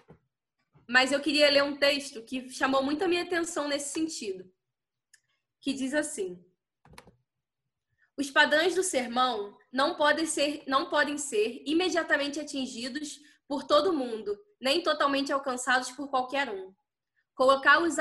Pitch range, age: 240-295 Hz, 10-29